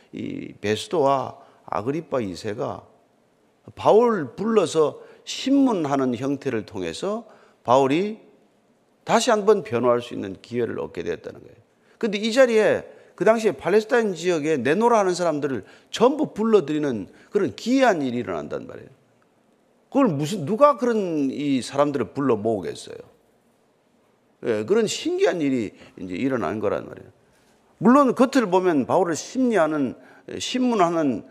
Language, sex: Korean, male